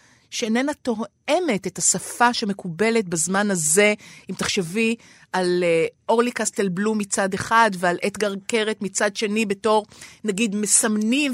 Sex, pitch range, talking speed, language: female, 195-270 Hz, 120 wpm, Hebrew